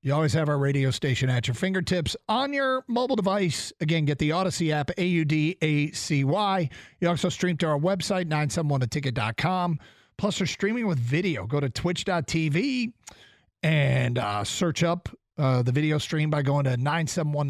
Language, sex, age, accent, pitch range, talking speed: English, male, 40-59, American, 130-185 Hz, 180 wpm